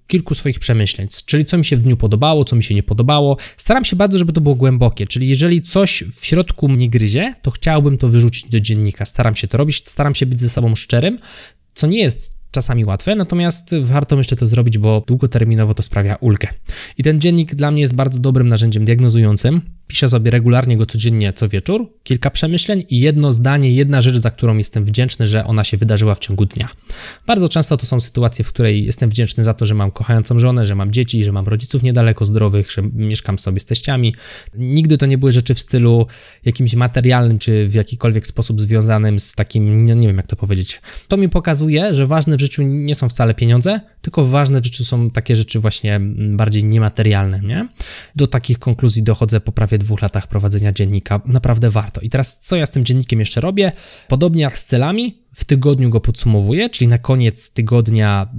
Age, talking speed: 20-39, 205 wpm